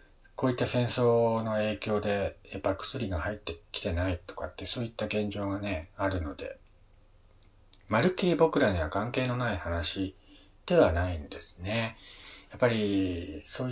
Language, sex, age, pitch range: Japanese, male, 40-59, 90-115 Hz